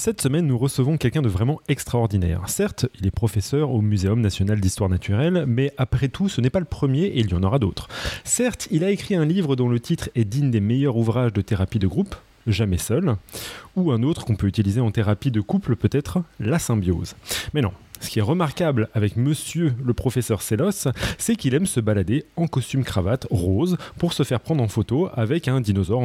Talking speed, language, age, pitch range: 215 wpm, French, 30-49, 110-145 Hz